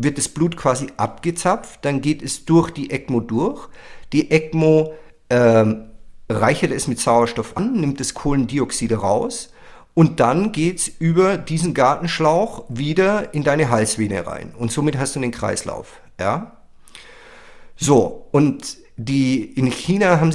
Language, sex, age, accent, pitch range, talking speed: German, male, 50-69, German, 120-155 Hz, 145 wpm